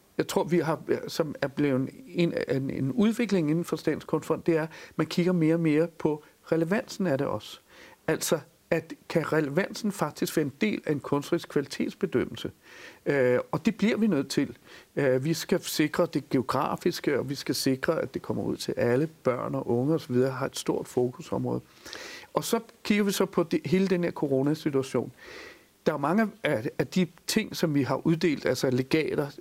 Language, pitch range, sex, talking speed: Danish, 145-185 Hz, male, 190 wpm